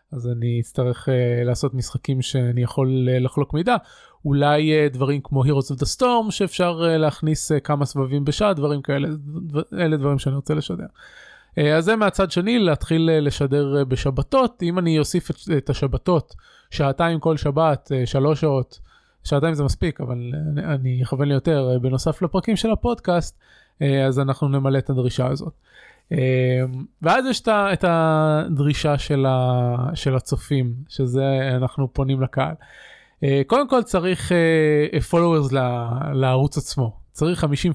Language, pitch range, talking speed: Hebrew, 135-170 Hz, 160 wpm